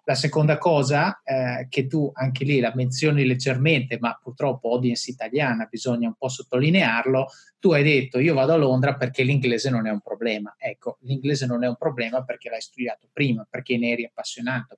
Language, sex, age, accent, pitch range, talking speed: Italian, male, 30-49, native, 125-150 Hz, 185 wpm